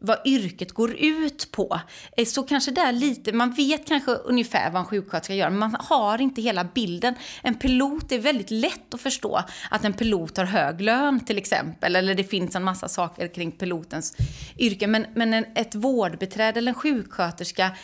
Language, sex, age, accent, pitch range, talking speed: Swedish, female, 30-49, native, 185-240 Hz, 185 wpm